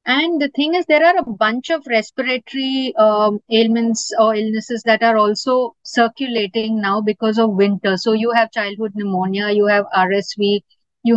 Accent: Indian